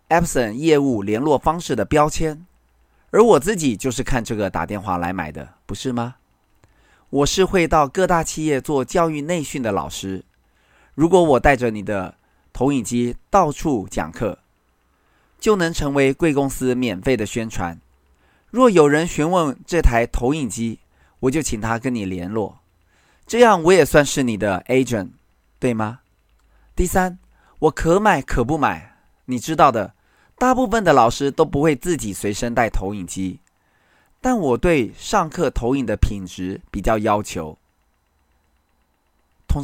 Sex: male